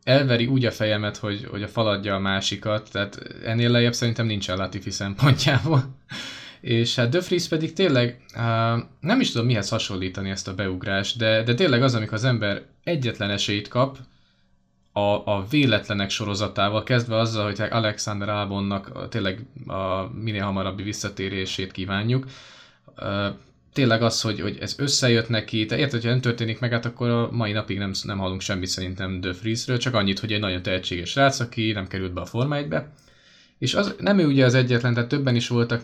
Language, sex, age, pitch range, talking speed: Hungarian, male, 20-39, 100-120 Hz, 175 wpm